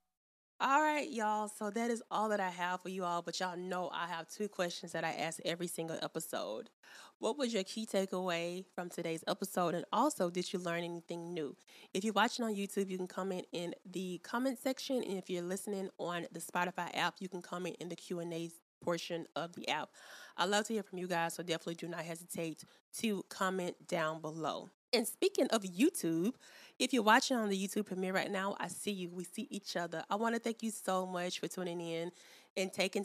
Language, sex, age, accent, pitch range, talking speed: English, female, 20-39, American, 170-195 Hz, 215 wpm